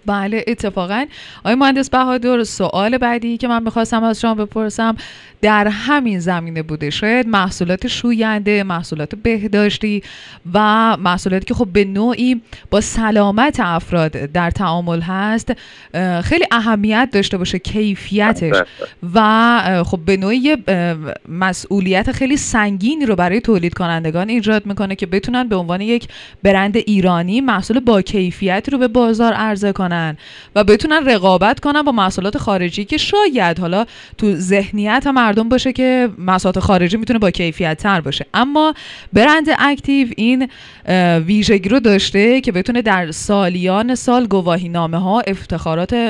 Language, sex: Persian, female